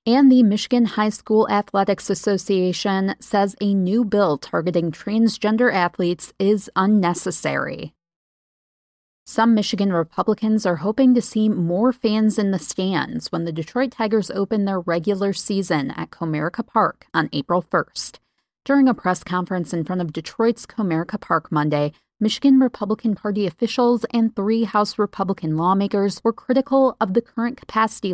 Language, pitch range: English, 175-225 Hz